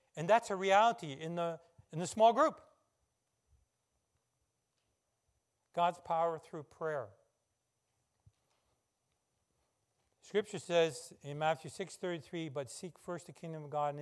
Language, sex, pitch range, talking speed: English, male, 145-205 Hz, 115 wpm